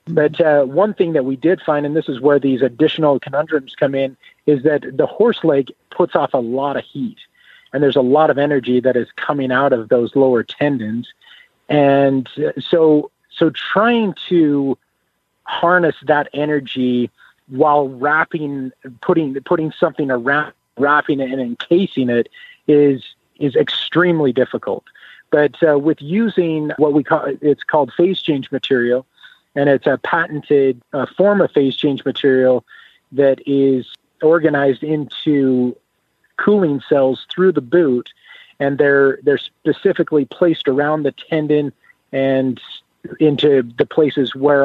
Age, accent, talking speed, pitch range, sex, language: 40-59, American, 145 wpm, 130-155 Hz, male, English